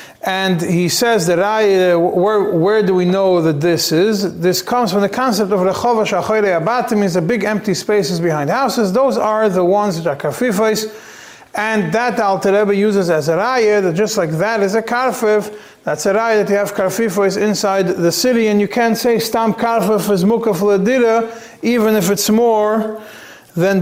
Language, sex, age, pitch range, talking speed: English, male, 40-59, 175-220 Hz, 185 wpm